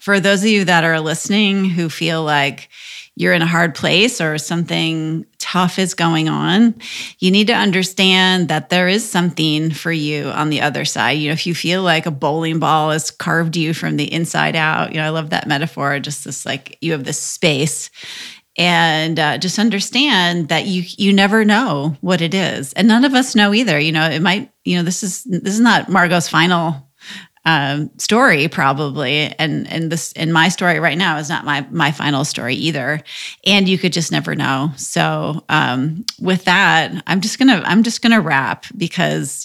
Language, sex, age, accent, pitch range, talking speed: English, female, 30-49, American, 155-185 Hz, 200 wpm